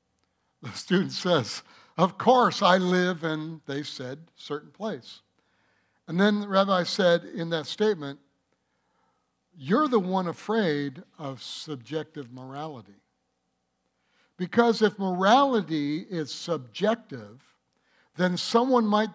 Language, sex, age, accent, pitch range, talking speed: English, male, 60-79, American, 150-215 Hz, 110 wpm